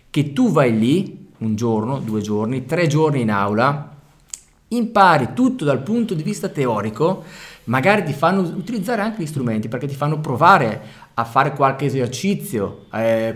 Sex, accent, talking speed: male, native, 155 wpm